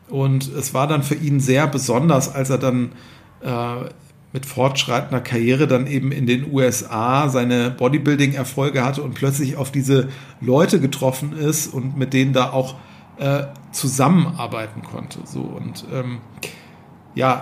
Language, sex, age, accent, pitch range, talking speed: German, male, 40-59, German, 125-145 Hz, 145 wpm